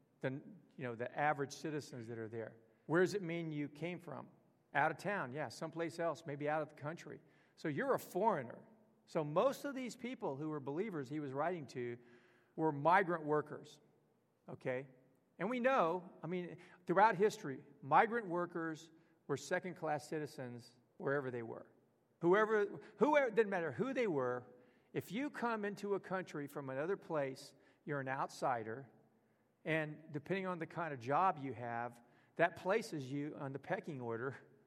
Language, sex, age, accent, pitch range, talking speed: English, male, 50-69, American, 140-185 Hz, 170 wpm